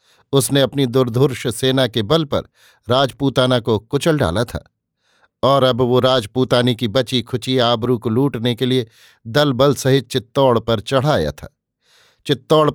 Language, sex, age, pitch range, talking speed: Hindi, male, 50-69, 120-140 Hz, 150 wpm